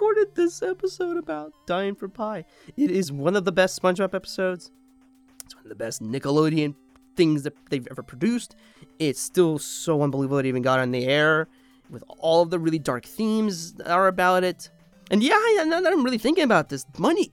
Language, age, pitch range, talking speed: English, 30-49, 140-205 Hz, 195 wpm